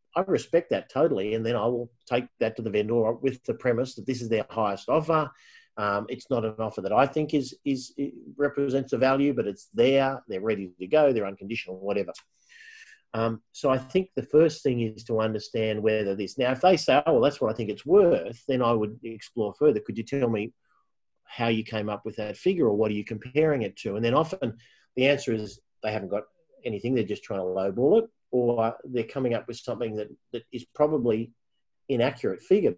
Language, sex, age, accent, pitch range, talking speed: English, male, 40-59, Australian, 110-135 Hz, 220 wpm